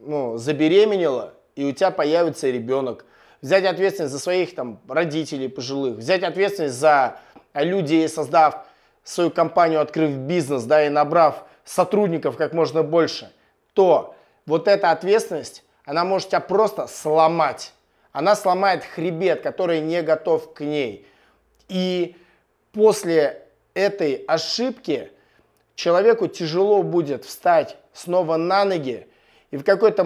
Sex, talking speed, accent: male, 120 wpm, native